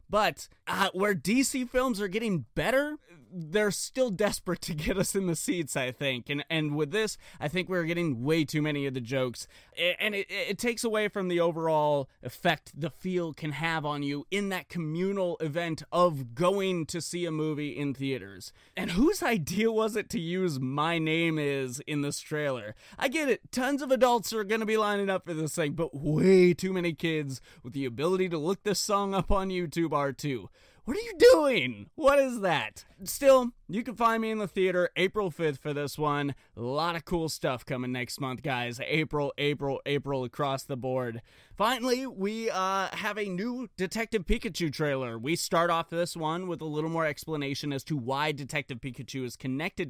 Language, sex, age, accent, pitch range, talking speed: English, male, 30-49, American, 140-200 Hz, 200 wpm